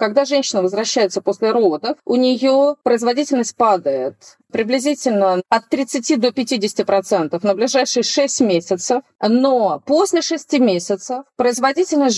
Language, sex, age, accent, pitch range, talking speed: Russian, female, 40-59, native, 195-250 Hz, 120 wpm